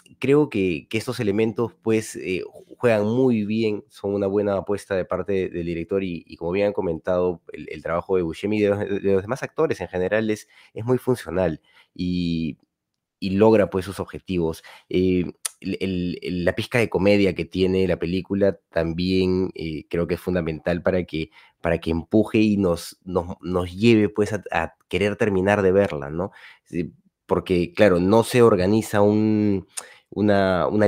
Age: 30-49